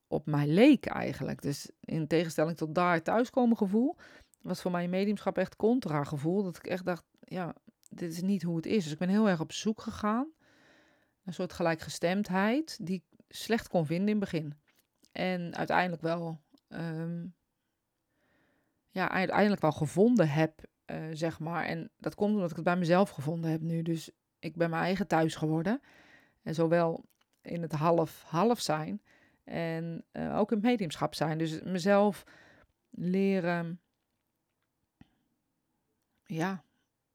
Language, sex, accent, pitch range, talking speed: Dutch, female, Dutch, 160-205 Hz, 150 wpm